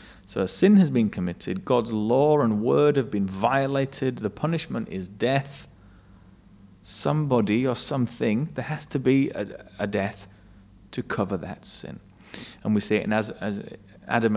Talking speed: 160 wpm